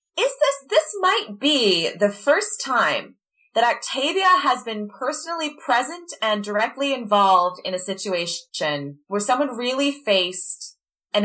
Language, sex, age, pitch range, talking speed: English, female, 20-39, 185-270 Hz, 135 wpm